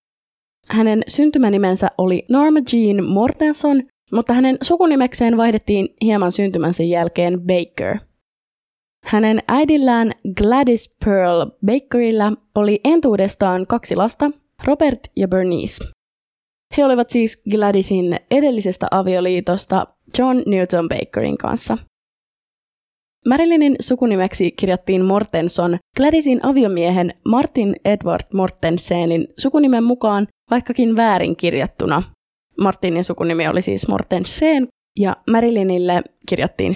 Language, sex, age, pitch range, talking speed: Finnish, female, 20-39, 185-250 Hz, 95 wpm